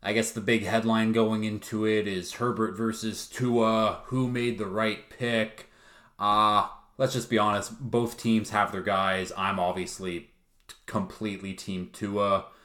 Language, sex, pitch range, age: English, male, 95-110 Hz, 20-39